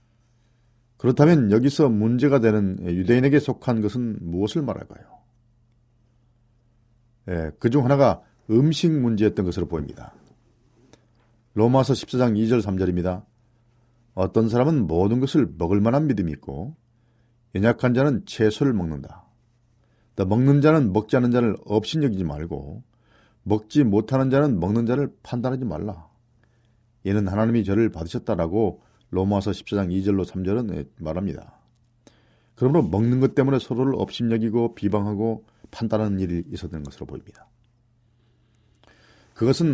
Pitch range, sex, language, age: 105-125 Hz, male, Korean, 40-59